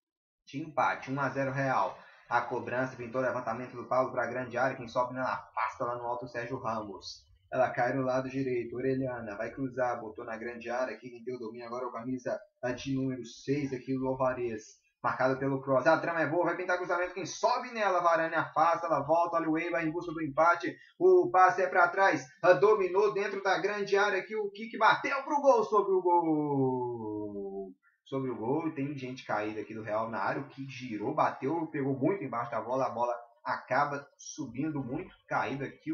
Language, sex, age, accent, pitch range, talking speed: Portuguese, male, 20-39, Brazilian, 120-170 Hz, 200 wpm